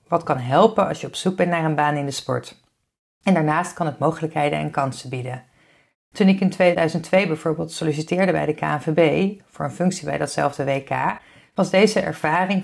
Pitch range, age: 150-190 Hz, 40-59